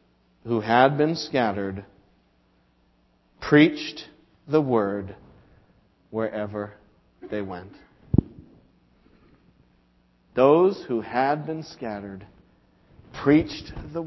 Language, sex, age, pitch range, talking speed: English, male, 50-69, 105-130 Hz, 75 wpm